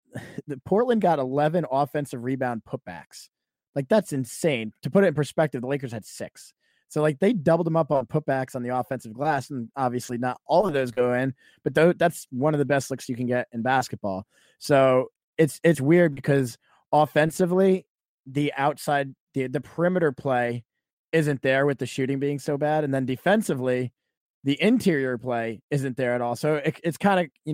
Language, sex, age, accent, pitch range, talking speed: English, male, 20-39, American, 130-165 Hz, 190 wpm